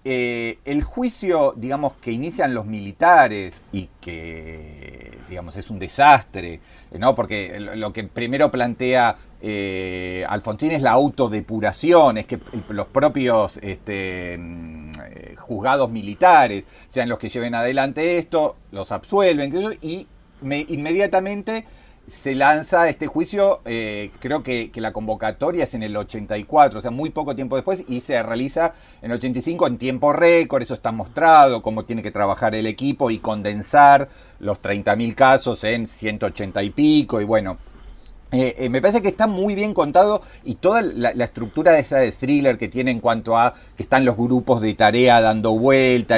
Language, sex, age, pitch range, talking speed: Spanish, male, 40-59, 105-145 Hz, 155 wpm